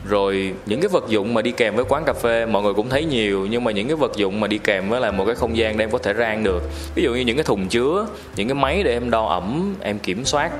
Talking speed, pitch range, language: 310 wpm, 100-120 Hz, Vietnamese